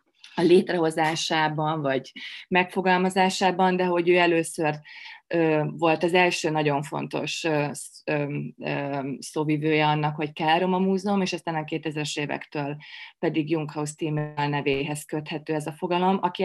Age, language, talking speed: 20-39, Hungarian, 125 wpm